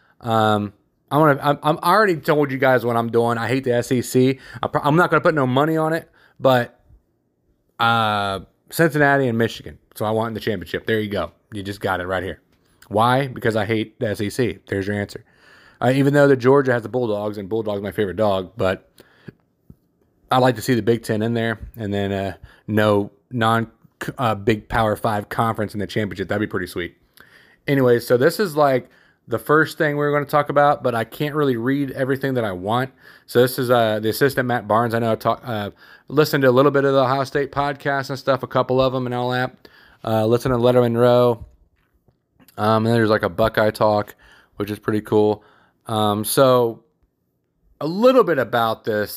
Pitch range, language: 105-135 Hz, English